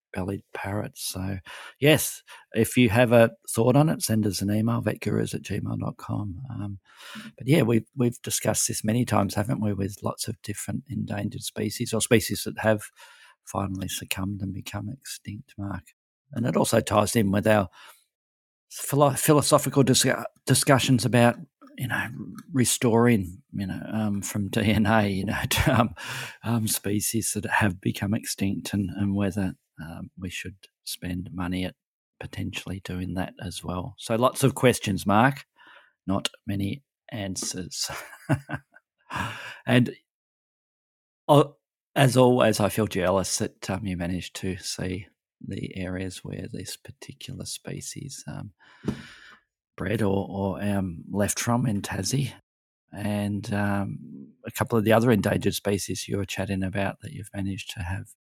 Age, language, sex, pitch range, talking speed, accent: 50-69, English, male, 95-115 Hz, 145 wpm, Australian